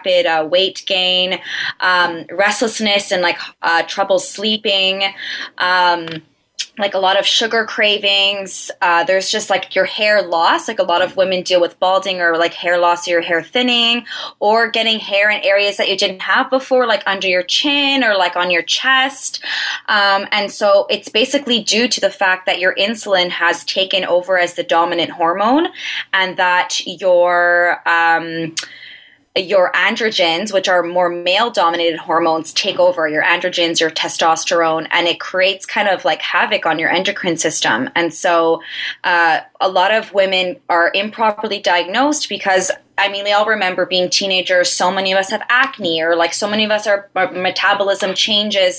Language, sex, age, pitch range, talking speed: English, female, 20-39, 175-210 Hz, 170 wpm